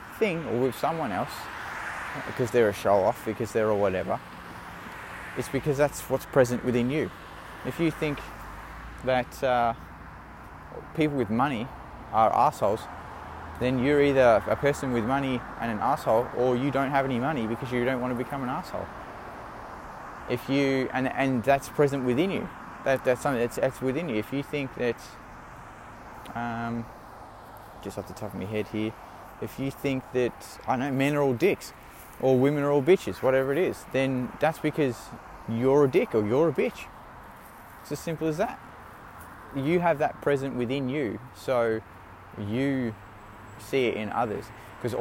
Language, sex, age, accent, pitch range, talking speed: English, male, 20-39, Australian, 115-140 Hz, 170 wpm